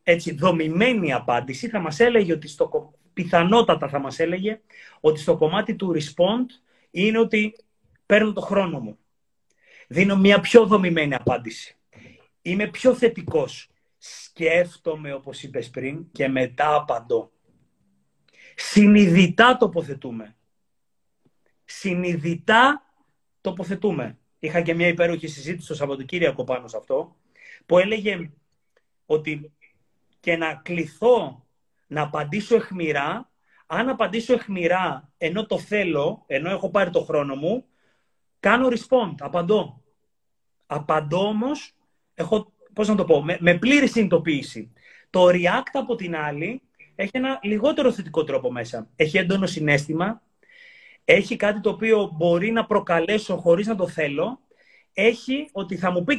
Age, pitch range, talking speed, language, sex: 30-49, 155-225 Hz, 115 wpm, Greek, male